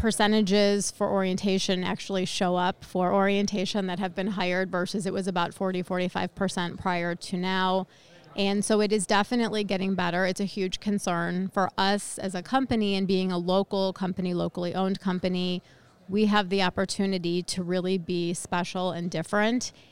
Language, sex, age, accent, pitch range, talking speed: English, female, 30-49, American, 180-195 Hz, 165 wpm